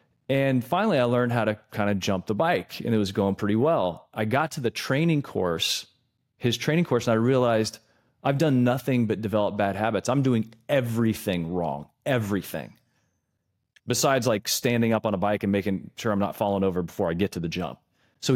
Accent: American